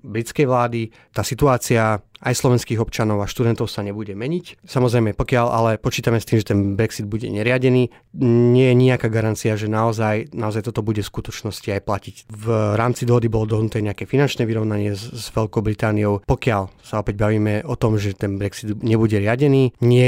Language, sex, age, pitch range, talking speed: Slovak, male, 30-49, 105-120 Hz, 175 wpm